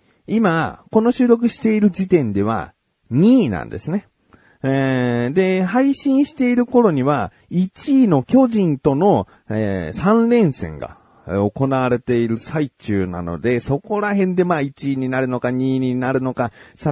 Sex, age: male, 40-59